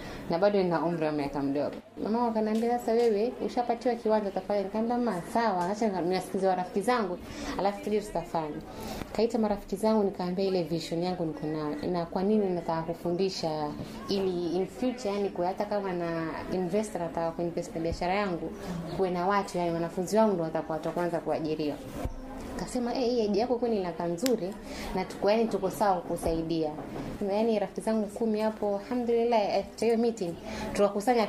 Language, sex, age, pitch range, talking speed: Swahili, female, 20-39, 180-235 Hz, 145 wpm